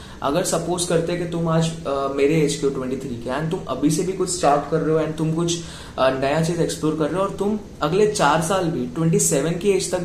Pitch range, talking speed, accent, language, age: 125-165 Hz, 250 wpm, native, Hindi, 20-39